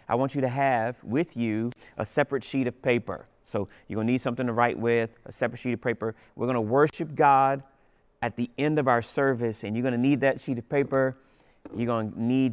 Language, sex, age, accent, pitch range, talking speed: English, male, 30-49, American, 115-130 Hz, 240 wpm